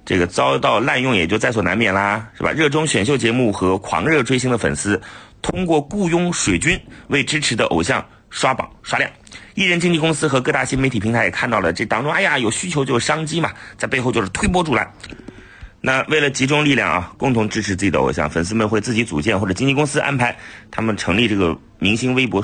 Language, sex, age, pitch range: Chinese, male, 30-49, 100-135 Hz